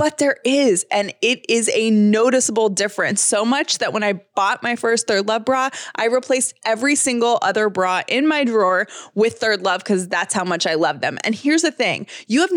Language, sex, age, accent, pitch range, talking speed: English, female, 20-39, American, 205-275 Hz, 215 wpm